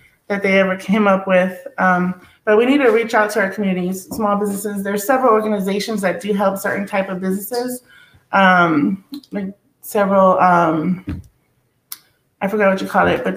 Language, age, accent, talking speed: English, 30-49, American, 175 wpm